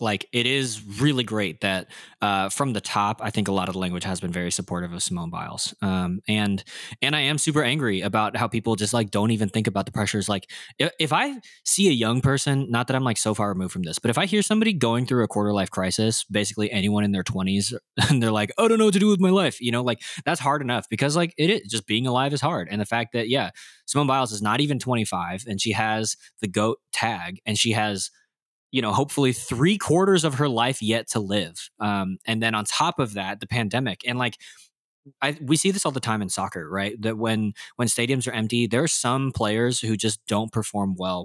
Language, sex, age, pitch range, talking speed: English, male, 20-39, 105-135 Hz, 245 wpm